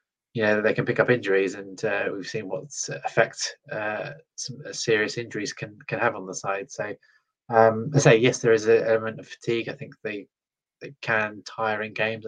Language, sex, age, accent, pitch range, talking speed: English, male, 20-39, British, 100-145 Hz, 210 wpm